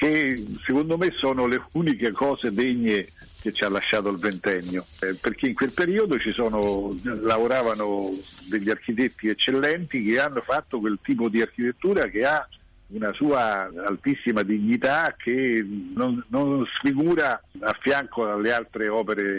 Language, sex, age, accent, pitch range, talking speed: Italian, male, 50-69, native, 100-125 Hz, 140 wpm